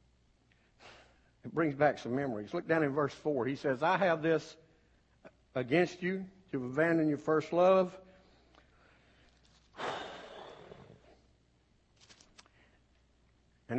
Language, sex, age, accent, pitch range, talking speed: English, male, 60-79, American, 110-185 Hz, 100 wpm